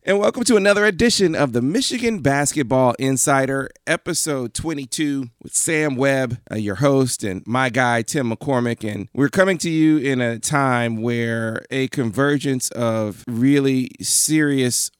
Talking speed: 145 wpm